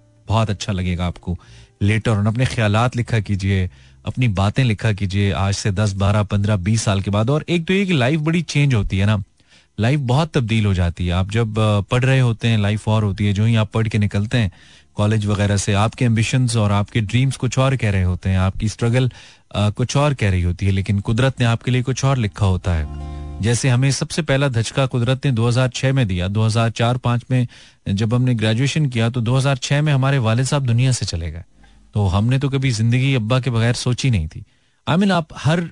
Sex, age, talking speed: male, 30-49, 210 wpm